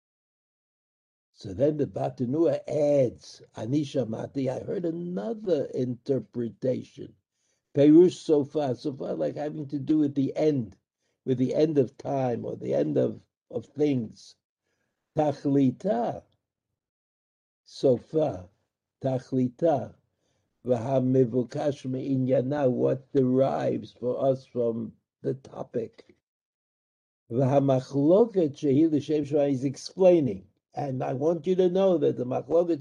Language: English